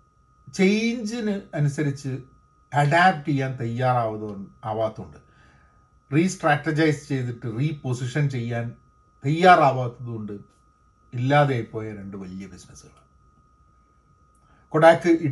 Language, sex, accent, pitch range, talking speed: Malayalam, male, native, 115-155 Hz, 75 wpm